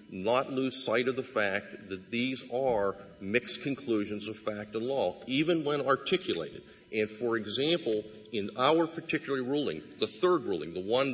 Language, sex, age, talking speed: English, male, 50-69, 160 wpm